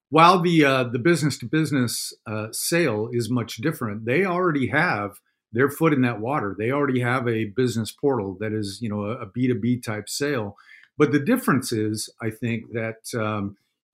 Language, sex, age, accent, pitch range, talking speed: English, male, 50-69, American, 110-130 Hz, 190 wpm